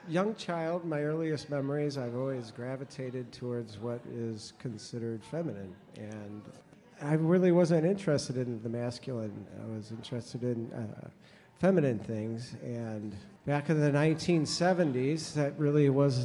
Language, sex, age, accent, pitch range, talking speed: English, male, 50-69, American, 125-165 Hz, 135 wpm